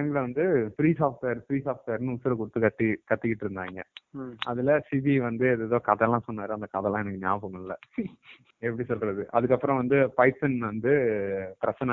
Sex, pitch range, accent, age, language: male, 110-135 Hz, native, 20-39, Tamil